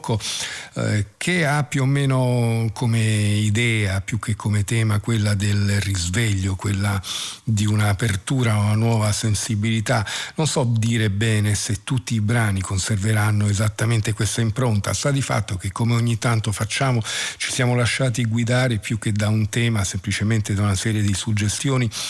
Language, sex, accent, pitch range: Italian, male, native, 105-120 Hz